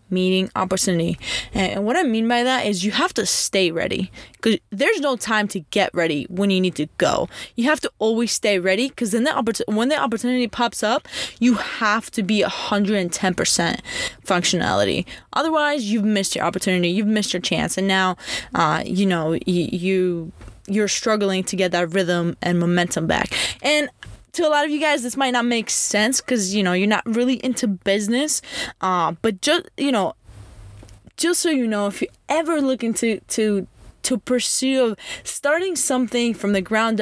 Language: English